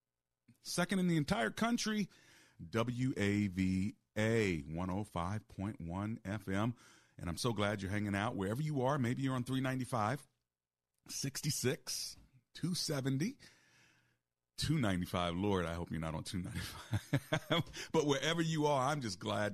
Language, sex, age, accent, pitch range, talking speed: English, male, 40-59, American, 90-110 Hz, 130 wpm